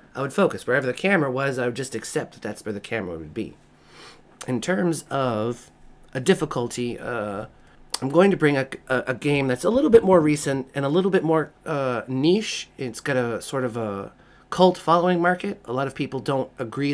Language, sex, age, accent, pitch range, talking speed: English, male, 30-49, American, 120-155 Hz, 215 wpm